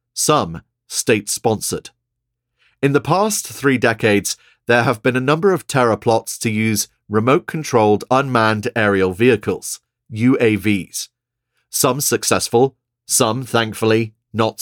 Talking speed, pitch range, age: 110 wpm, 110-135 Hz, 40-59